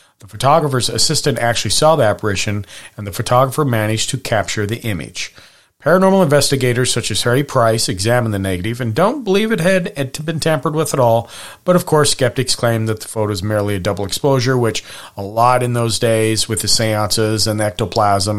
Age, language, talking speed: 40-59, English, 195 wpm